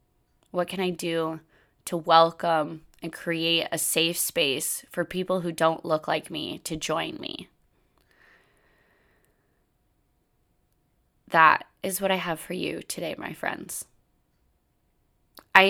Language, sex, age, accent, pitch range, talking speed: English, female, 20-39, American, 155-180 Hz, 120 wpm